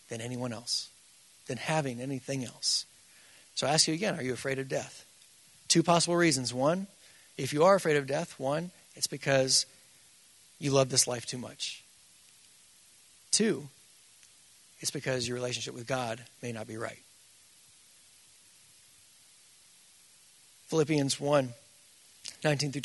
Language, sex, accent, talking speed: English, male, American, 135 wpm